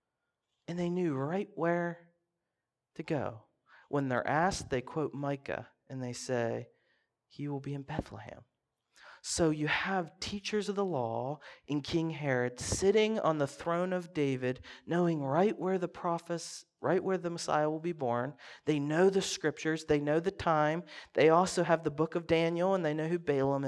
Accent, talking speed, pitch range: American, 175 wpm, 140-175 Hz